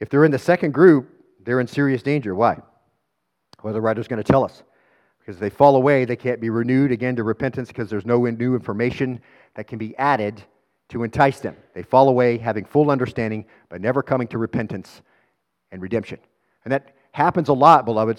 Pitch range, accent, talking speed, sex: 120-155 Hz, American, 205 wpm, male